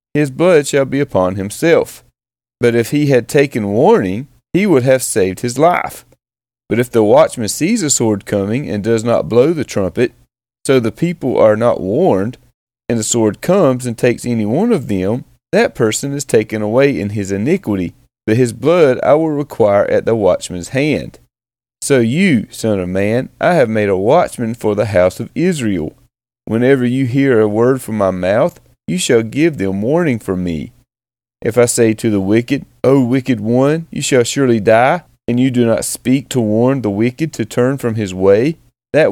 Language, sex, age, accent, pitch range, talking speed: English, male, 30-49, American, 110-135 Hz, 190 wpm